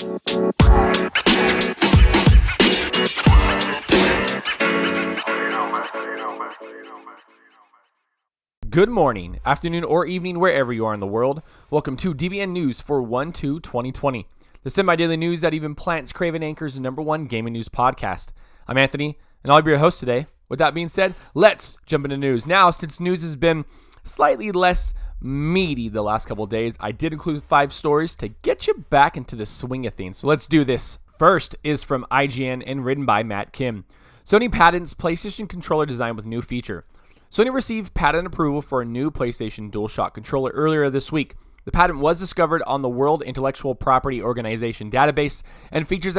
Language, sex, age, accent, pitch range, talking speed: English, male, 20-39, American, 120-165 Hz, 155 wpm